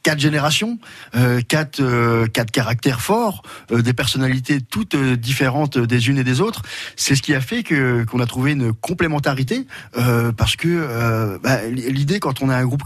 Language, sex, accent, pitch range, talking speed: French, male, French, 115-135 Hz, 185 wpm